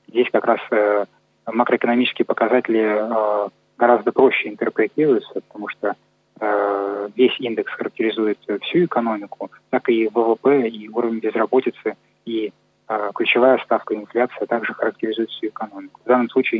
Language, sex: Russian, male